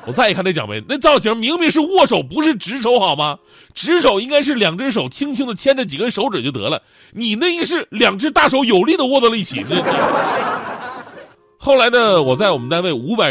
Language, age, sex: Chinese, 30-49, male